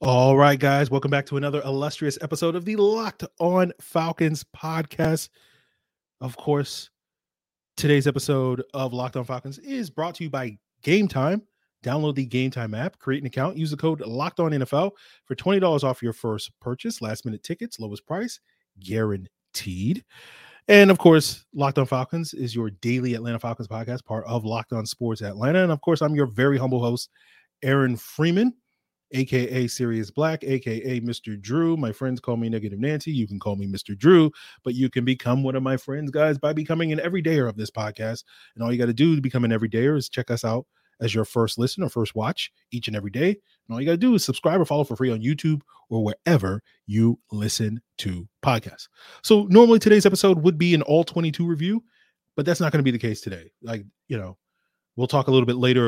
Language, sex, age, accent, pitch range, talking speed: English, male, 30-49, American, 115-160 Hz, 205 wpm